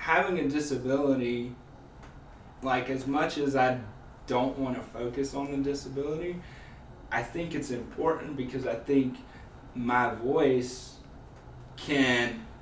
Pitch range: 115-135 Hz